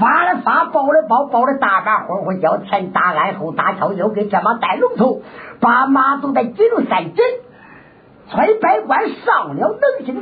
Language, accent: Chinese, American